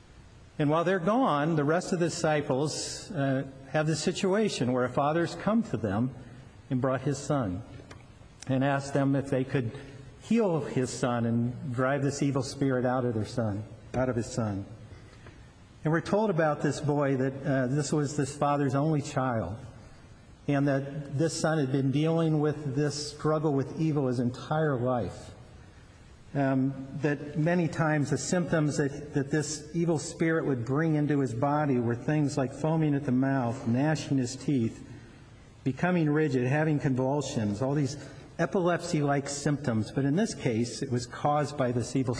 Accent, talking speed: American, 165 wpm